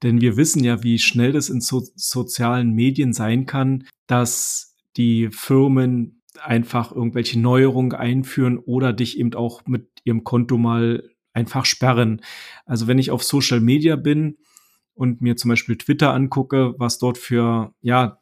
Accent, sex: German, male